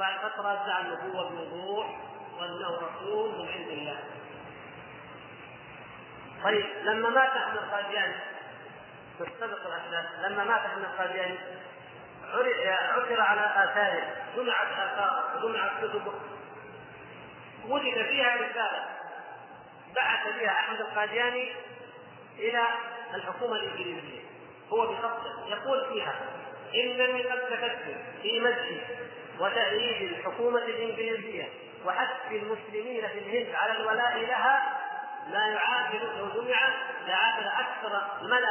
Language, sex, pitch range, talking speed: Arabic, male, 205-265 Hz, 100 wpm